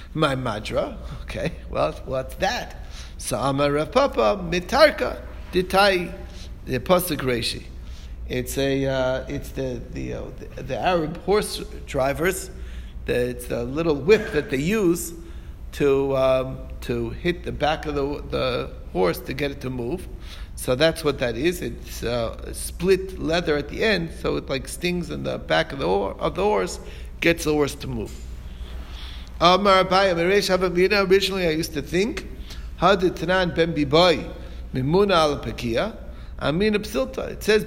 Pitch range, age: 125-185 Hz, 60-79